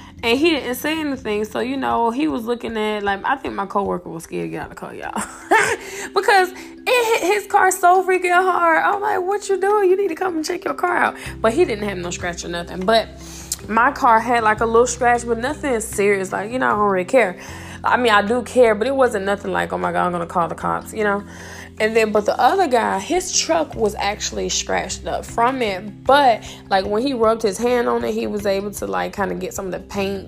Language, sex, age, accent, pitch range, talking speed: English, female, 20-39, American, 205-290 Hz, 260 wpm